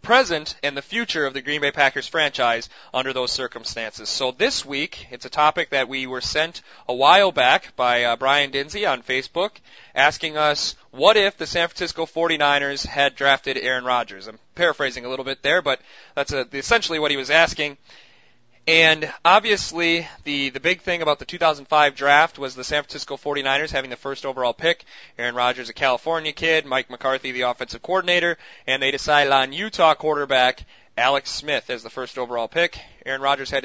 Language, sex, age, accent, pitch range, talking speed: English, male, 20-39, American, 130-165 Hz, 185 wpm